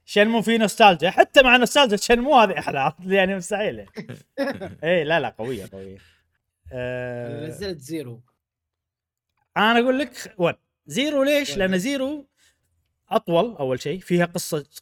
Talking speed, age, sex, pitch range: 140 wpm, 20-39, male, 130-205 Hz